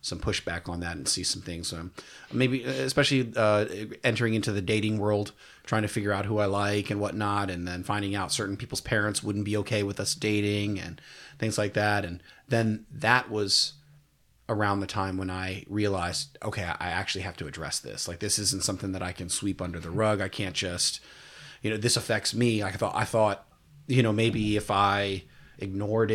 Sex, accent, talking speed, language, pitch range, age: male, American, 205 wpm, English, 95-110 Hz, 30-49